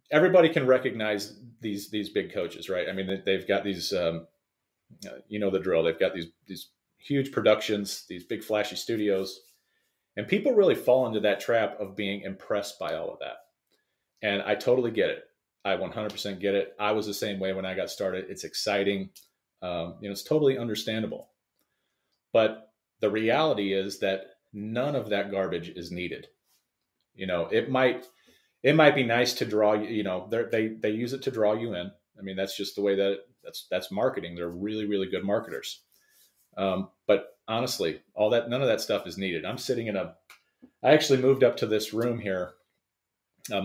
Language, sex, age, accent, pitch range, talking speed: English, male, 40-59, American, 95-120 Hz, 190 wpm